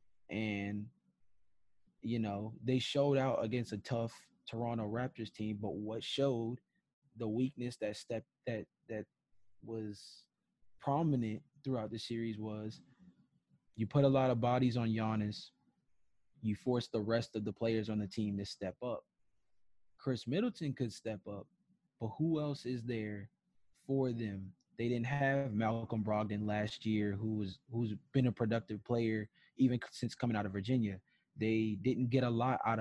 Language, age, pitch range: English, 20-39, 105-125 Hz